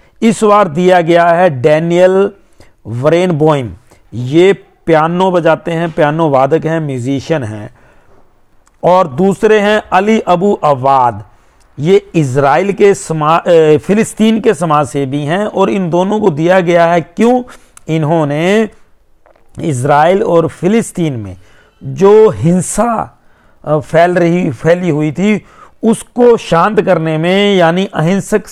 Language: Hindi